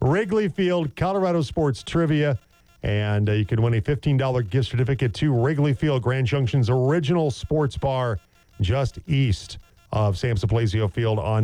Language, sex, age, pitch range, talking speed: English, male, 40-59, 100-135 Hz, 150 wpm